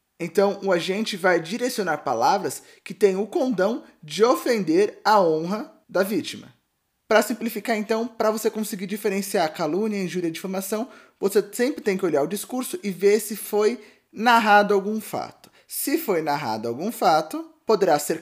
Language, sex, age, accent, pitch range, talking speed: Portuguese, male, 20-39, Brazilian, 190-225 Hz, 160 wpm